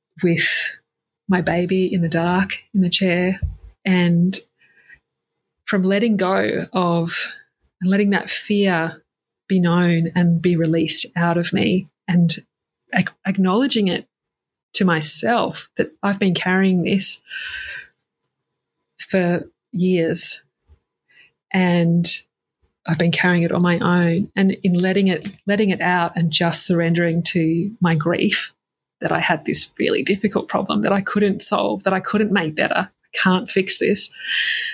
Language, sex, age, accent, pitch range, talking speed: English, female, 20-39, Australian, 175-200 Hz, 140 wpm